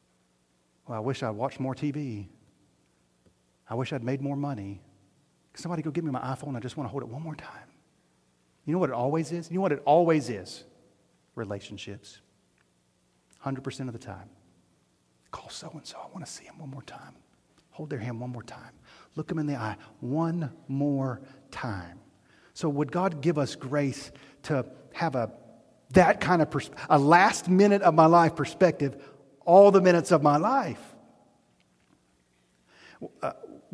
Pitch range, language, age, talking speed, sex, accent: 115-155 Hz, English, 40-59, 175 wpm, male, American